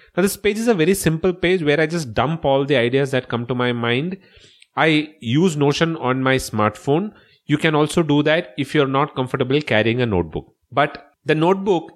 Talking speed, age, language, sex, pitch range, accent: 205 wpm, 30-49, English, male, 130-165 Hz, Indian